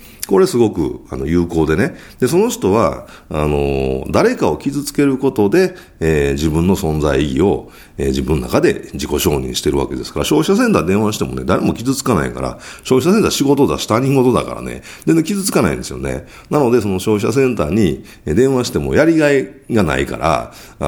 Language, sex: Japanese, male